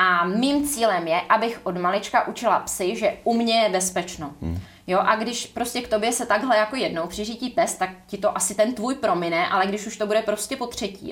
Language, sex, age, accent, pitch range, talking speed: Czech, female, 20-39, native, 195-235 Hz, 215 wpm